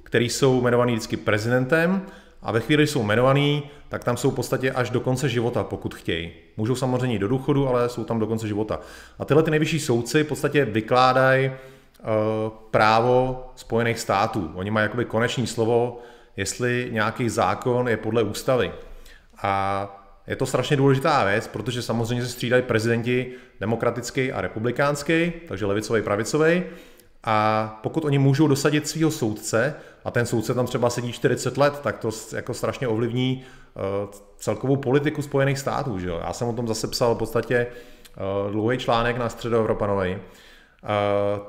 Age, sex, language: 30-49, male, Czech